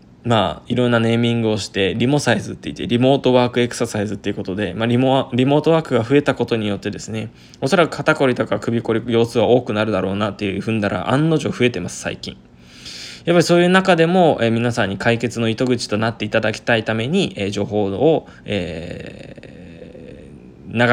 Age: 20-39